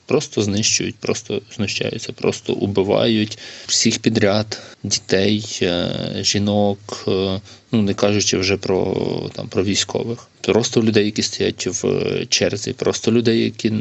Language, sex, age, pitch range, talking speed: Ukrainian, male, 20-39, 95-110 Hz, 115 wpm